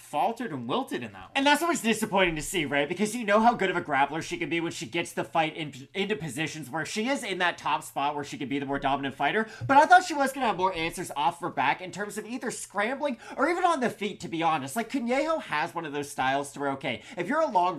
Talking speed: 290 wpm